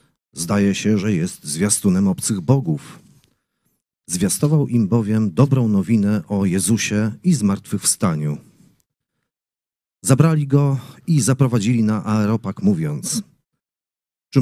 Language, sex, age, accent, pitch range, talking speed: Polish, male, 40-59, native, 110-150 Hz, 100 wpm